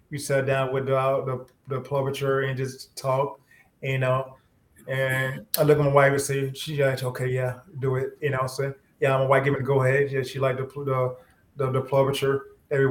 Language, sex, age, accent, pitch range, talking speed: English, male, 20-39, American, 125-145 Hz, 215 wpm